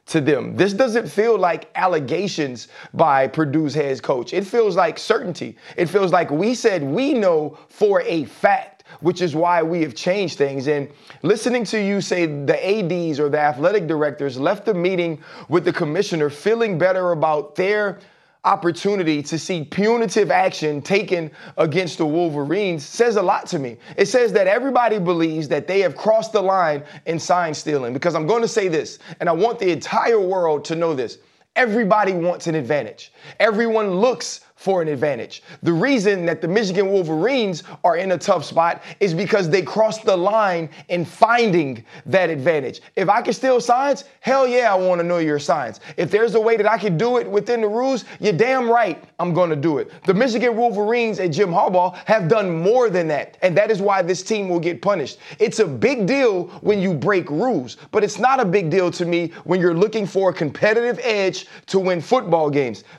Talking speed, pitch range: 195 wpm, 165-220 Hz